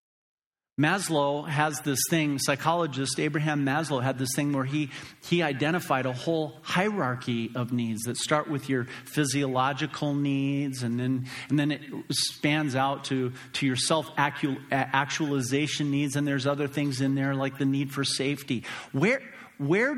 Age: 40-59